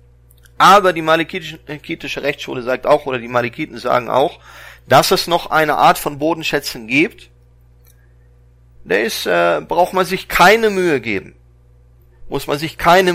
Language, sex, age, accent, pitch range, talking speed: German, male, 40-59, German, 100-150 Hz, 140 wpm